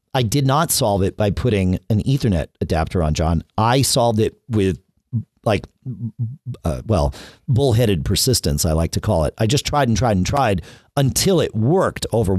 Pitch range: 90-130 Hz